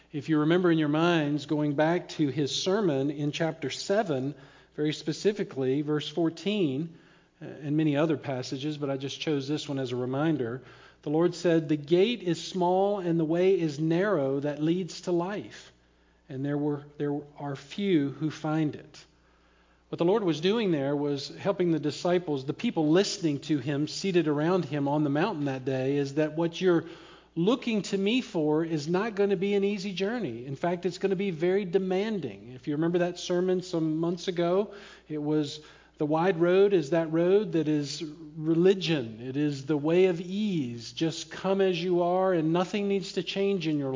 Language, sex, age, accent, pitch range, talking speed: English, male, 50-69, American, 145-180 Hz, 190 wpm